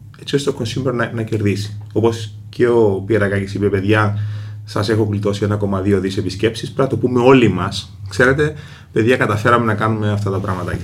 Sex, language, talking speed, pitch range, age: male, Greek, 190 wpm, 100-115 Hz, 30-49